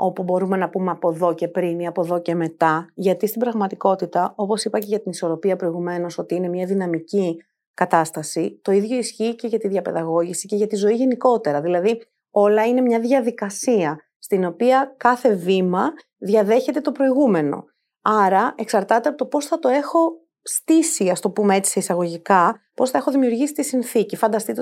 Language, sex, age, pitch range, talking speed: Greek, female, 30-49, 185-250 Hz, 180 wpm